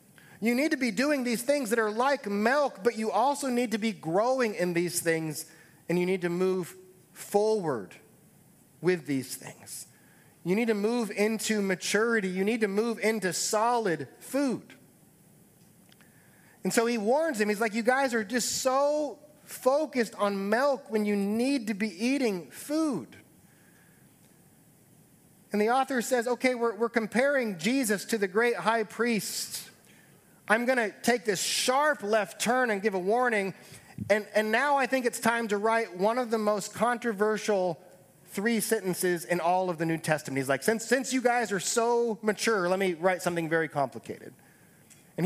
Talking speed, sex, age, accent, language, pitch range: 170 wpm, male, 30-49, American, English, 180-235 Hz